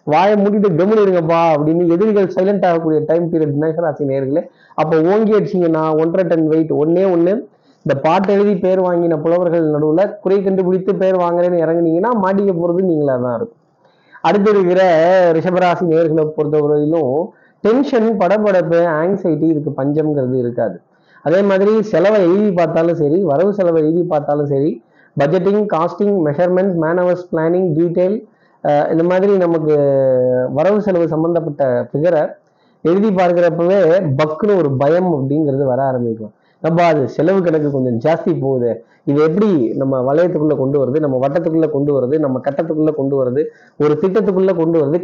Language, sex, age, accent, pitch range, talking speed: Tamil, male, 30-49, native, 150-190 Hz, 130 wpm